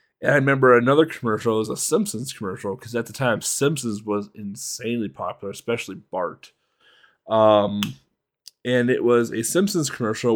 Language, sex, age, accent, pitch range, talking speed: English, male, 20-39, American, 105-125 Hz, 150 wpm